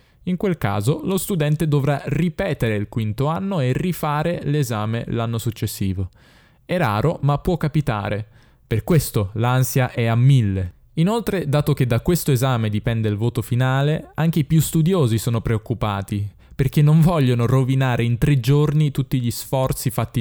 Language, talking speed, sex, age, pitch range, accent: Italian, 155 wpm, male, 10-29, 110-150 Hz, native